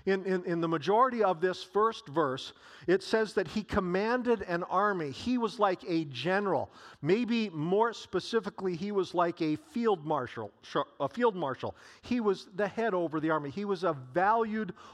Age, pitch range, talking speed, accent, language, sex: 50-69, 185-225 Hz, 170 wpm, American, English, male